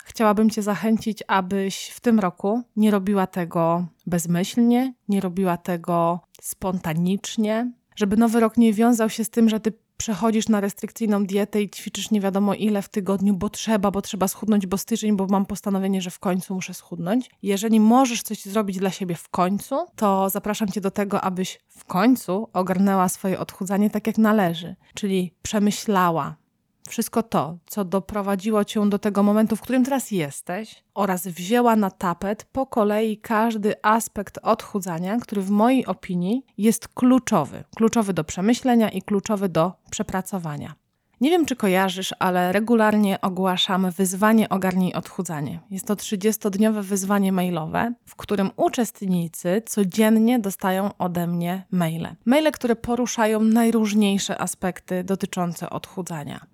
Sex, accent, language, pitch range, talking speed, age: female, native, Polish, 185-220 Hz, 150 wpm, 20-39